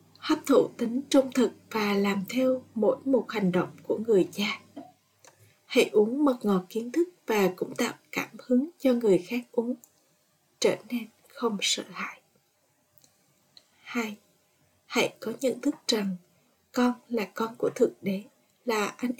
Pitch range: 210-255 Hz